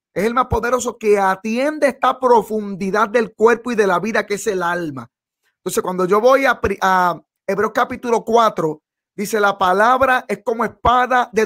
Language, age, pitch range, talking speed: English, 30-49, 190-240 Hz, 180 wpm